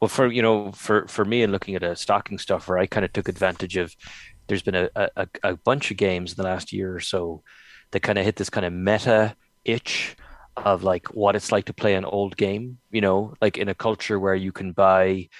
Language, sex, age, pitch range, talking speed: English, male, 30-49, 90-105 Hz, 240 wpm